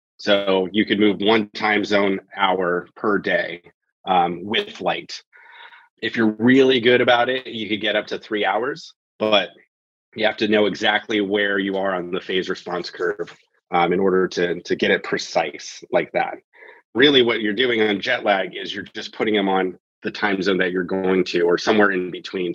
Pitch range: 95-110 Hz